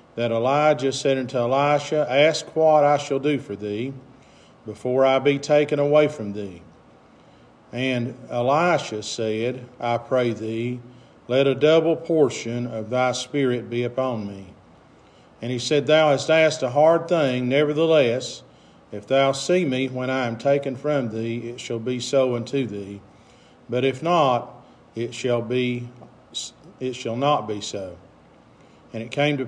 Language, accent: English, American